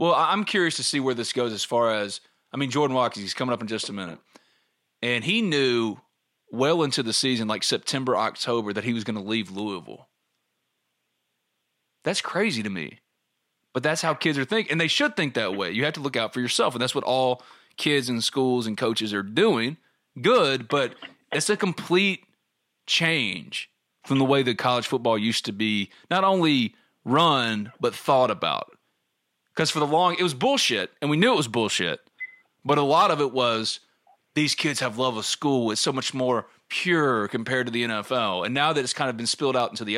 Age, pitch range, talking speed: 30-49, 110-145 Hz, 210 wpm